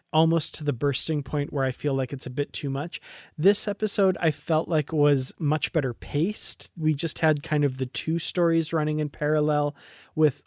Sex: male